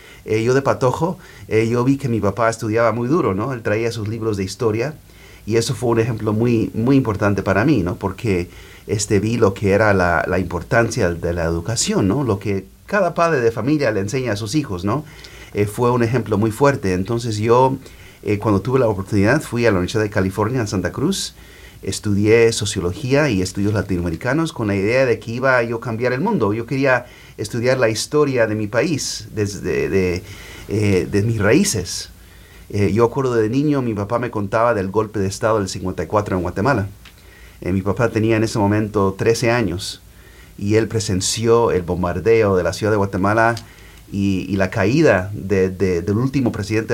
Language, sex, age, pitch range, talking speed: English, male, 40-59, 95-115 Hz, 195 wpm